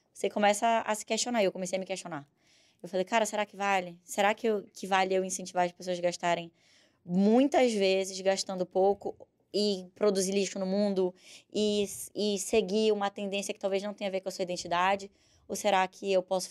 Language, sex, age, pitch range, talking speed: Portuguese, female, 10-29, 175-205 Hz, 205 wpm